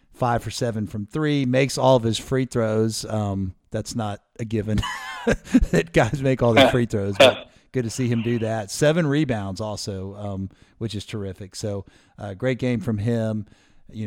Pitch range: 105-125 Hz